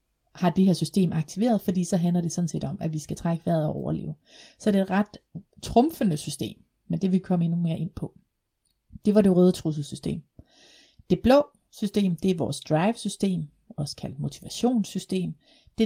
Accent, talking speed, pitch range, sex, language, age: native, 195 wpm, 160-195 Hz, female, Danish, 30-49